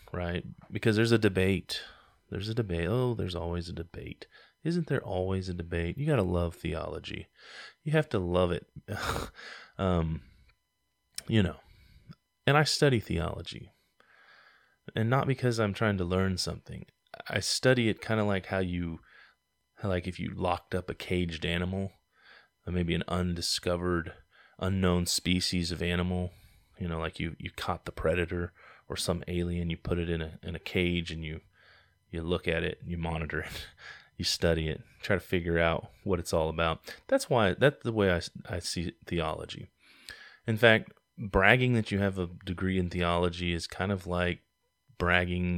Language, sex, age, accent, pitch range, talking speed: English, male, 20-39, American, 85-100 Hz, 170 wpm